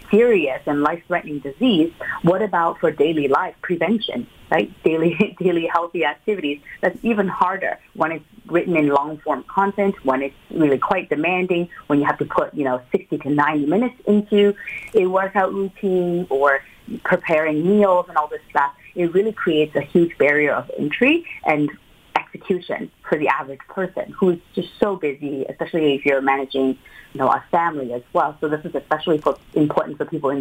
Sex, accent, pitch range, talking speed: female, American, 145-185 Hz, 175 wpm